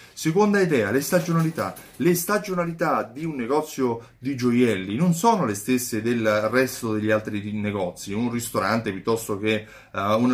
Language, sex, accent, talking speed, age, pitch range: Italian, male, native, 150 wpm, 30-49, 110-155 Hz